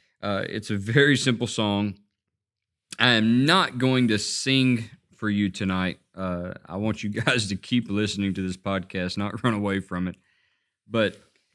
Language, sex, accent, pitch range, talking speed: English, male, American, 100-120 Hz, 160 wpm